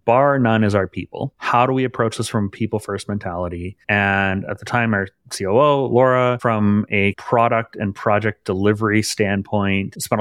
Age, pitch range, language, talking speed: 30-49, 100-120 Hz, English, 170 wpm